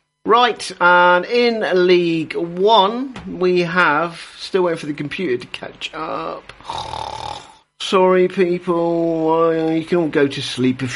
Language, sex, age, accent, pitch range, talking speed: English, male, 50-69, British, 150-215 Hz, 130 wpm